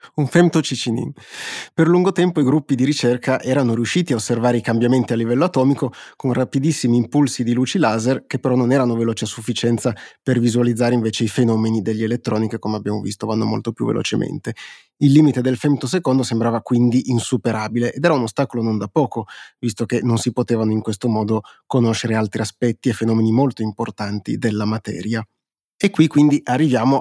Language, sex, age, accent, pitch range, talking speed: Italian, male, 30-49, native, 115-135 Hz, 180 wpm